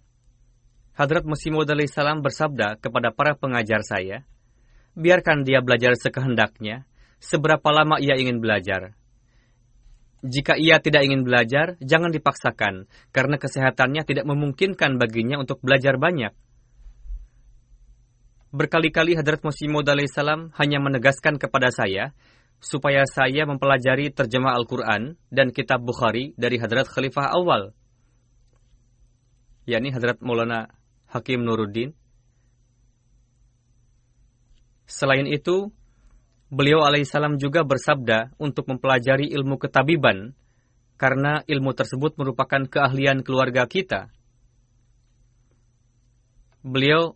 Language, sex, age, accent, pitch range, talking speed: Indonesian, male, 20-39, native, 120-145 Hz, 95 wpm